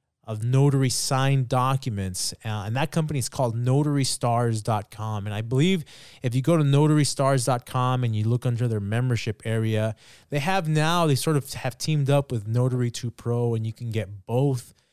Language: English